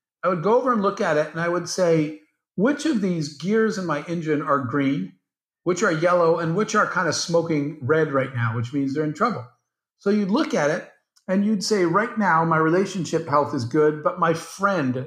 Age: 50-69